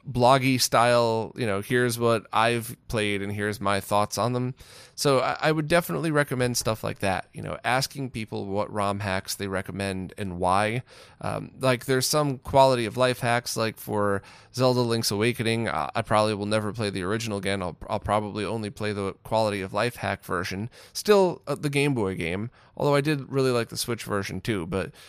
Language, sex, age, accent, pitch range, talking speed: English, male, 20-39, American, 100-130 Hz, 200 wpm